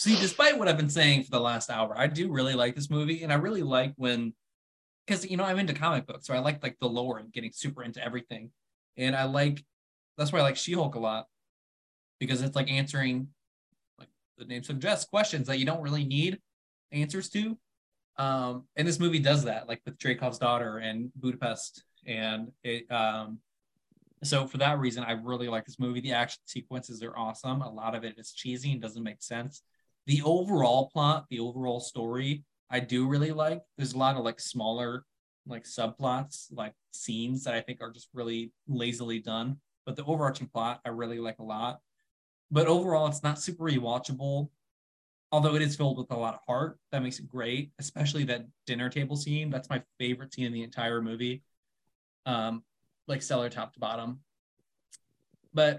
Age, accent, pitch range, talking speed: 20-39, American, 115-145 Hz, 195 wpm